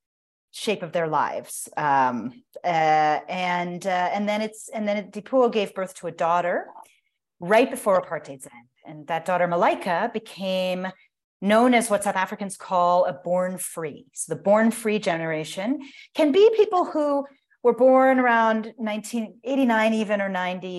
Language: English